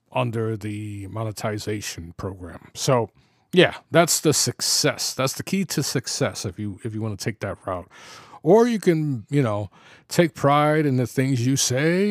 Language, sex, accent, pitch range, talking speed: English, male, American, 110-150 Hz, 175 wpm